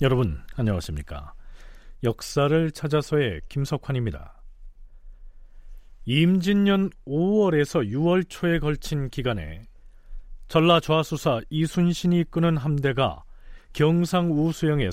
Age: 40-59